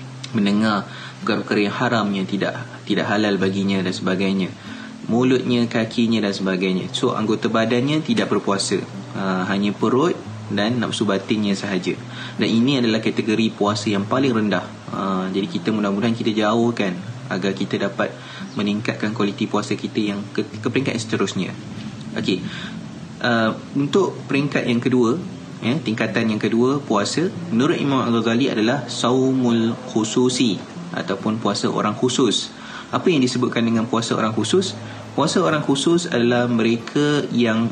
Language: Malay